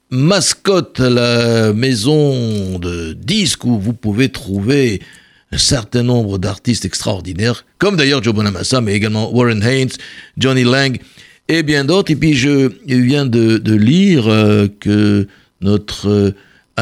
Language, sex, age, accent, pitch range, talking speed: French, male, 60-79, French, 110-140 Hz, 140 wpm